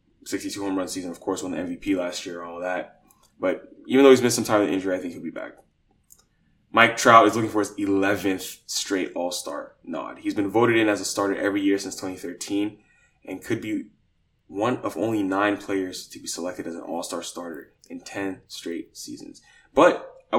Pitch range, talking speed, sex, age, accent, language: 100-130 Hz, 220 wpm, male, 10-29, American, English